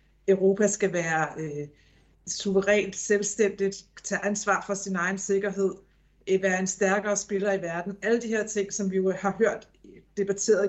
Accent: native